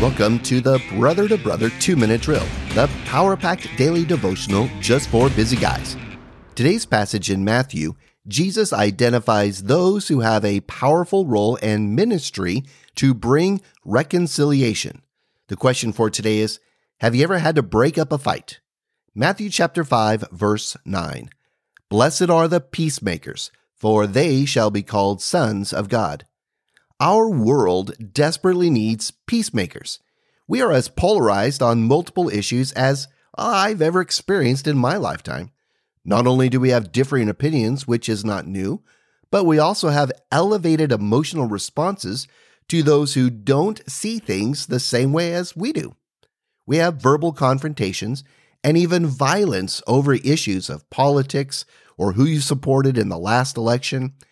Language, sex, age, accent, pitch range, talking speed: English, male, 40-59, American, 110-155 Hz, 145 wpm